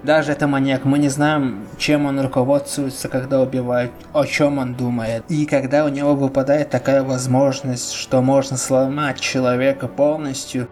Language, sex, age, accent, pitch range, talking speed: Russian, male, 20-39, native, 125-145 Hz, 150 wpm